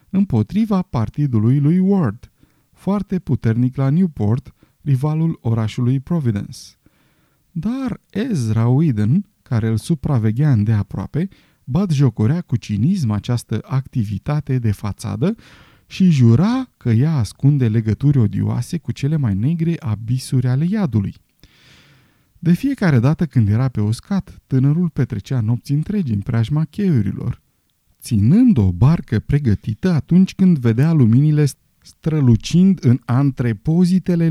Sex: male